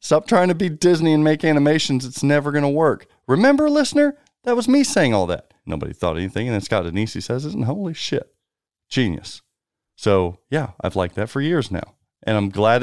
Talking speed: 210 wpm